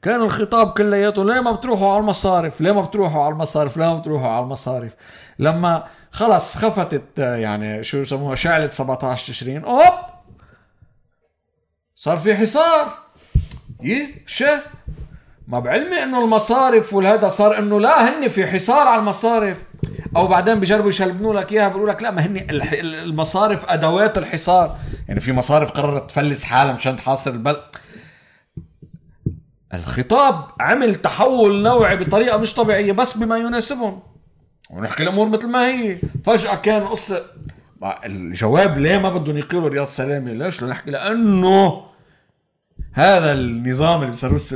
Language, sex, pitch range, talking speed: Arabic, male, 135-210 Hz, 135 wpm